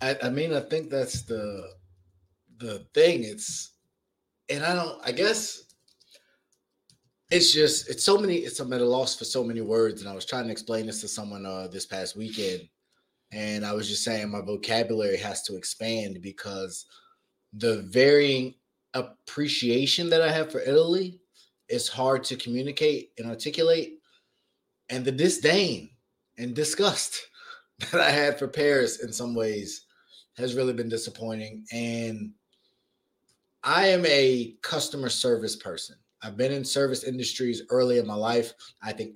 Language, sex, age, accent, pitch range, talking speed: English, male, 20-39, American, 115-150 Hz, 155 wpm